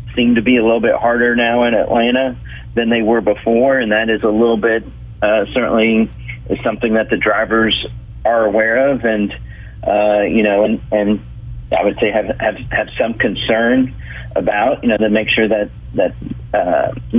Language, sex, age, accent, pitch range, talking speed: English, male, 40-59, American, 95-120 Hz, 180 wpm